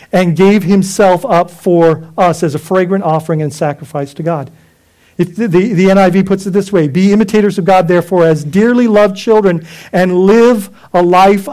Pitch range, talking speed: 155-205 Hz, 185 wpm